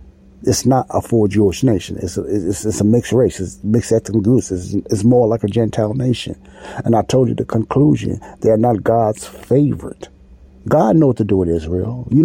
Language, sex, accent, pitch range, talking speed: English, male, American, 90-125 Hz, 215 wpm